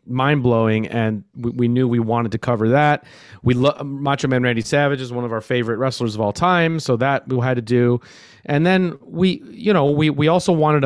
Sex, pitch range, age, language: male, 120-140 Hz, 30-49, Spanish